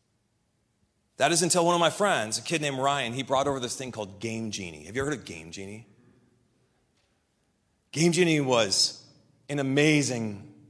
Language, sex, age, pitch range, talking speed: English, male, 30-49, 120-160 Hz, 170 wpm